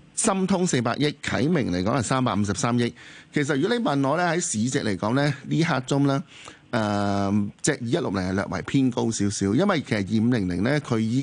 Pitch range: 110-150 Hz